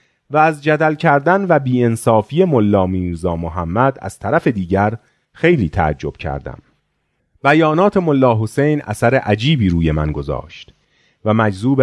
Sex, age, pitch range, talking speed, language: male, 40-59, 95-145 Hz, 130 wpm, Persian